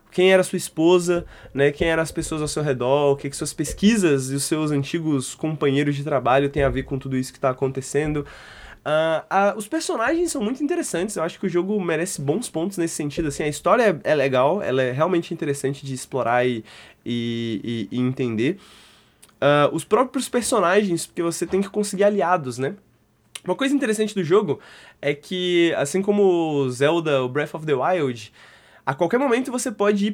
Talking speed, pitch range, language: 195 wpm, 135-185 Hz, Portuguese